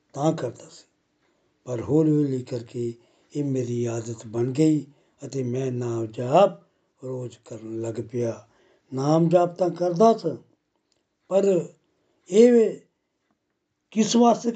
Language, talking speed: Punjabi, 120 wpm